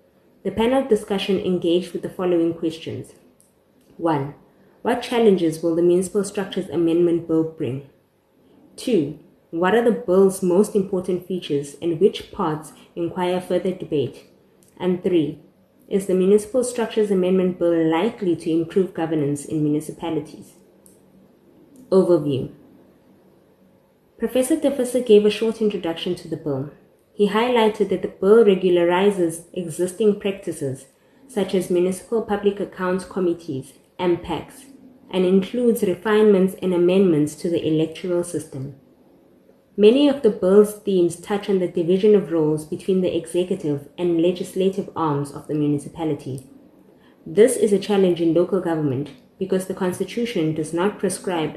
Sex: female